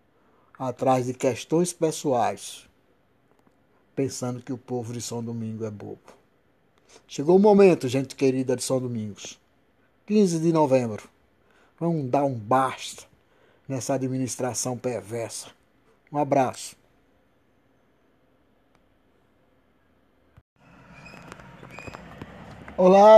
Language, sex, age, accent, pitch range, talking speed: Portuguese, male, 60-79, Brazilian, 115-170 Hz, 90 wpm